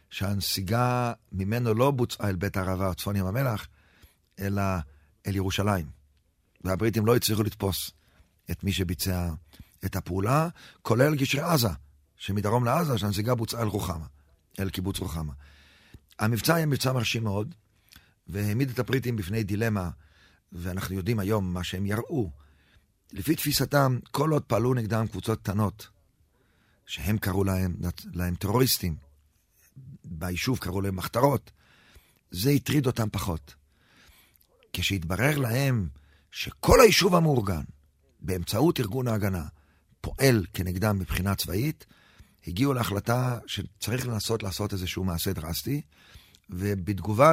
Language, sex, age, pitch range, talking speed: Hebrew, male, 40-59, 90-120 Hz, 115 wpm